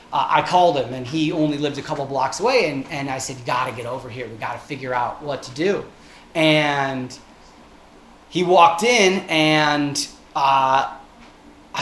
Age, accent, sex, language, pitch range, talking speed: 30-49, American, male, English, 145-180 Hz, 175 wpm